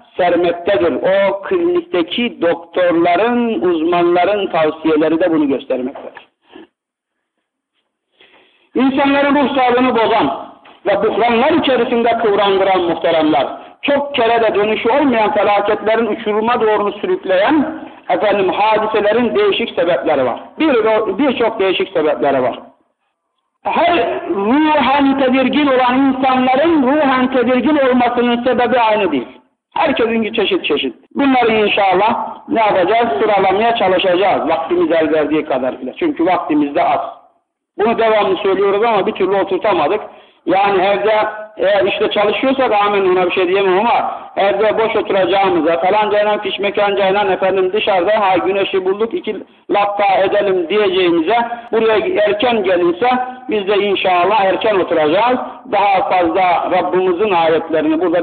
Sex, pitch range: male, 195-270 Hz